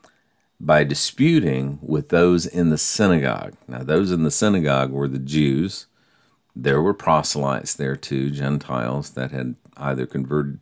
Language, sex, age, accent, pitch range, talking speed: English, male, 50-69, American, 70-85 Hz, 140 wpm